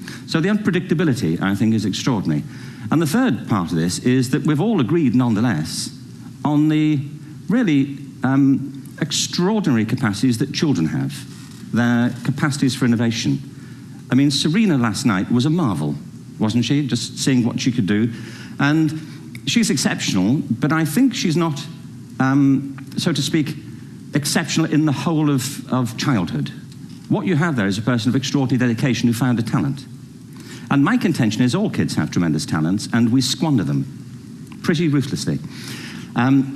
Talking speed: 160 wpm